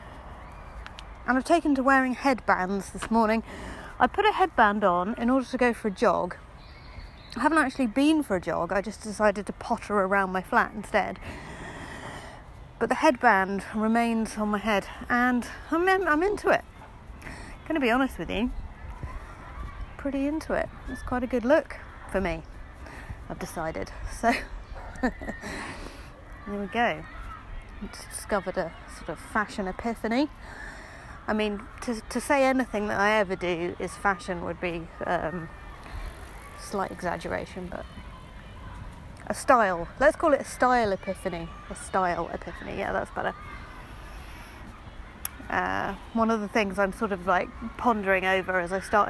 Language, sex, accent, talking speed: English, female, British, 150 wpm